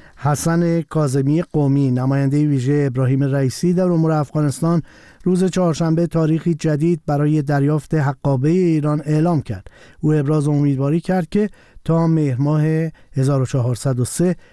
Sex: male